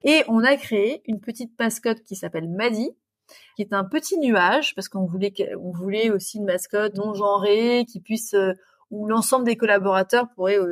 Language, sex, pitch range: French, female, 200-250 Hz